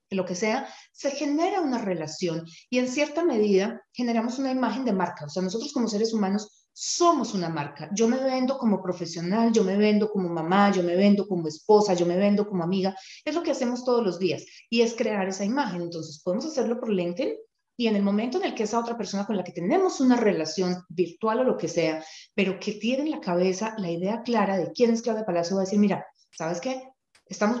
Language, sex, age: Spanish, female, 30-49